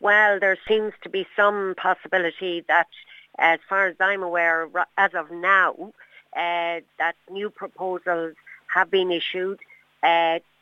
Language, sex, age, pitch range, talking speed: English, female, 60-79, 170-200 Hz, 135 wpm